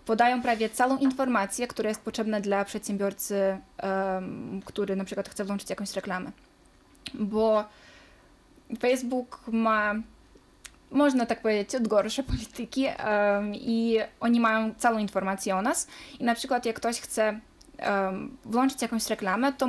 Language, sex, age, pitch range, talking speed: Polish, female, 20-39, 200-240 Hz, 125 wpm